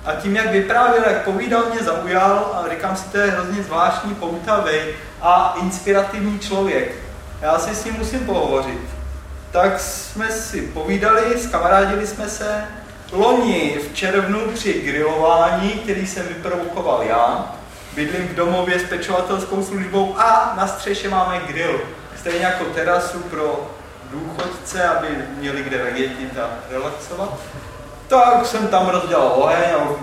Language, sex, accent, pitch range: Czech, male, native, 165-200 Hz